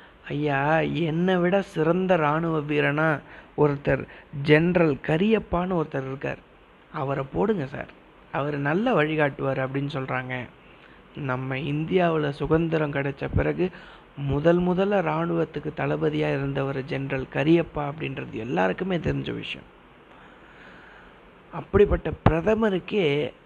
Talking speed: 95 wpm